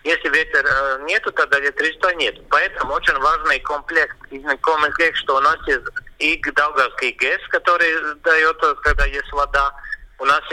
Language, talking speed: Russian, 135 wpm